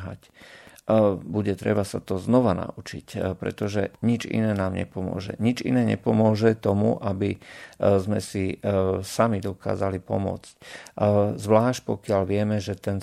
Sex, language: male, Slovak